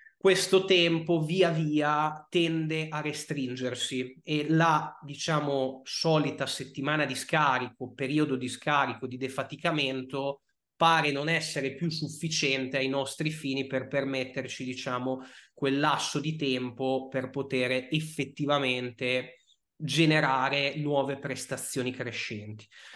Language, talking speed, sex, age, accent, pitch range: Italian, 105 wpm, male, 20-39, native, 130-155 Hz